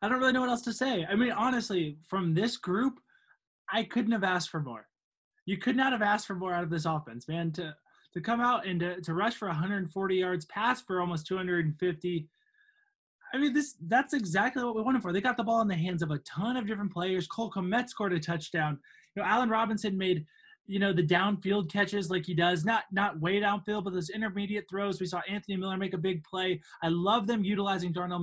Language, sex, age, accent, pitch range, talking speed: English, male, 20-39, American, 170-215 Hz, 230 wpm